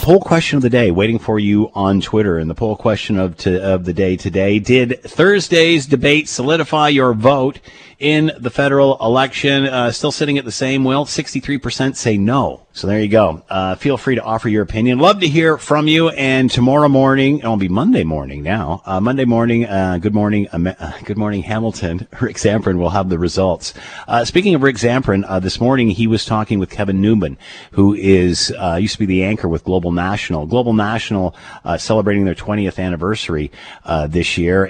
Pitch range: 90-120 Hz